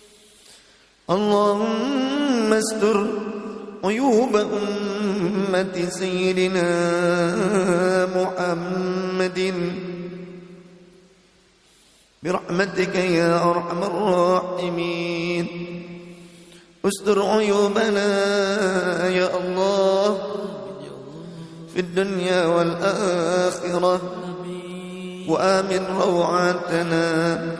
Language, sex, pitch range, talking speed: Indonesian, male, 175-205 Hz, 40 wpm